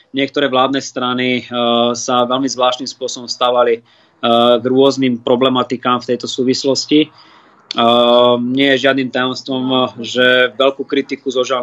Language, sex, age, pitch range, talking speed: Slovak, male, 20-39, 125-135 Hz, 135 wpm